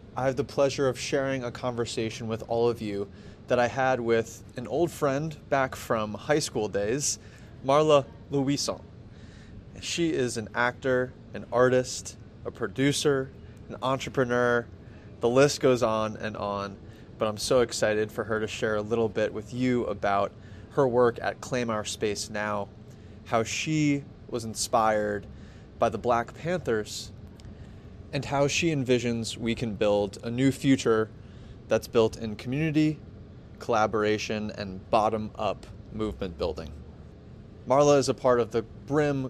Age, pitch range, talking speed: 20-39, 105-125 Hz, 150 wpm